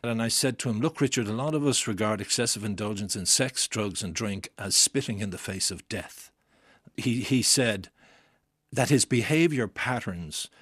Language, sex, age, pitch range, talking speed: English, male, 60-79, 105-135 Hz, 185 wpm